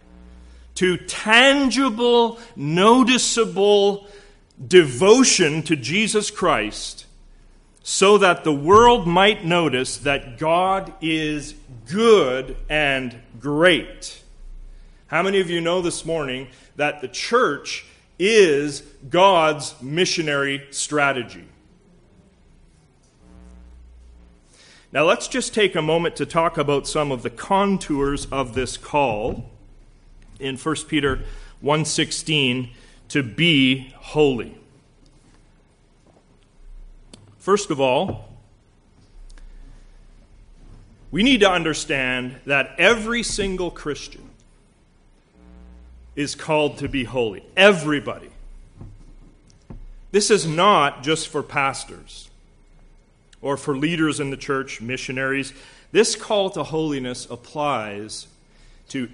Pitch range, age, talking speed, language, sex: 125-180 Hz, 40-59, 95 wpm, English, male